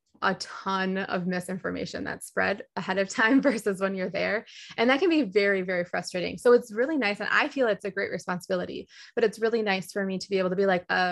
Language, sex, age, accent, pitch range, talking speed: English, female, 20-39, American, 185-230 Hz, 240 wpm